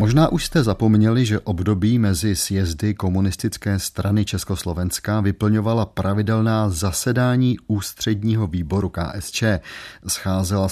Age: 40-59